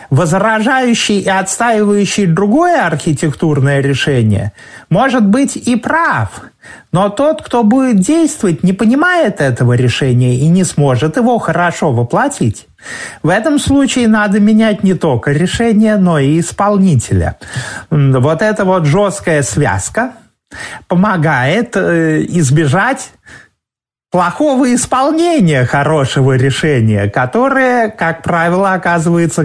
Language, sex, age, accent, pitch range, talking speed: Russian, male, 30-49, native, 140-225 Hz, 105 wpm